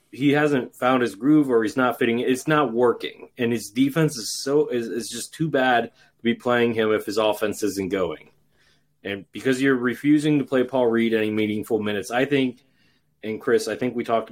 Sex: male